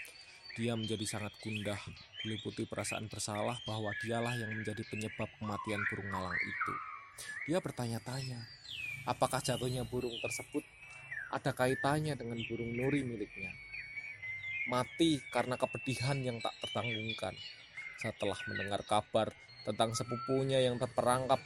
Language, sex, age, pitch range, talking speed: Indonesian, male, 20-39, 110-135 Hz, 115 wpm